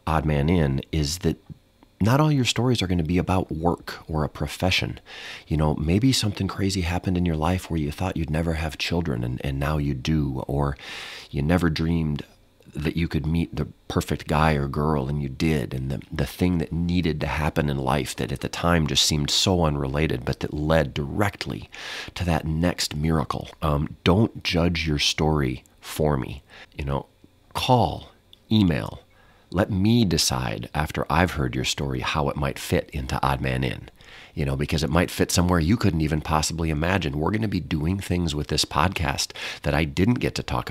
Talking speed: 200 wpm